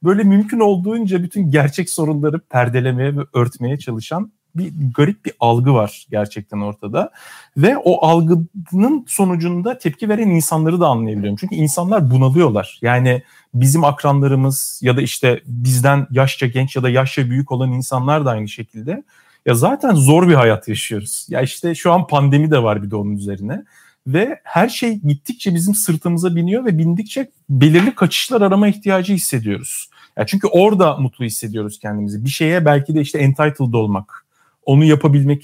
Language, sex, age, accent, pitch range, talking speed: Turkish, male, 40-59, native, 130-180 Hz, 155 wpm